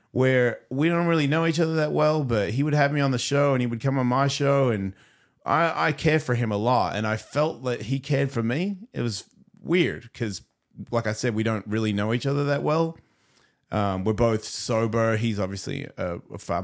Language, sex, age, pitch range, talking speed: English, male, 30-49, 100-125 Hz, 230 wpm